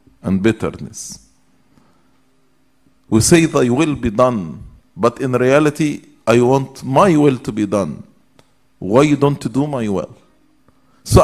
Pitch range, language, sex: 120-160 Hz, English, male